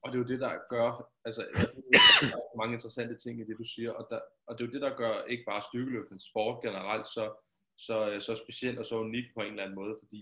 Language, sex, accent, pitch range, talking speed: Danish, male, native, 110-125 Hz, 255 wpm